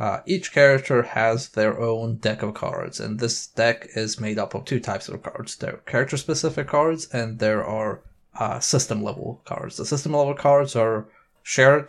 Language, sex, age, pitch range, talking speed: English, male, 20-39, 110-130 Hz, 175 wpm